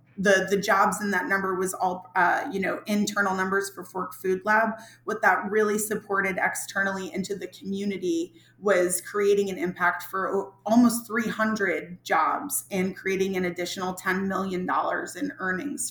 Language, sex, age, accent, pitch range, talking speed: English, female, 30-49, American, 185-210 Hz, 155 wpm